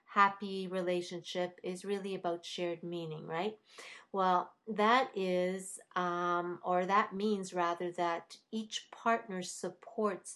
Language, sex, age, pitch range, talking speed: English, female, 50-69, 175-210 Hz, 115 wpm